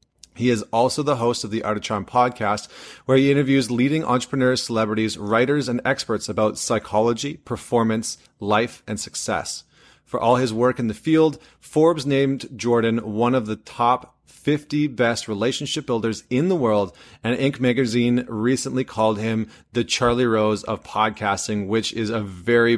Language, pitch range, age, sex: English, 105-125 Hz, 30-49, male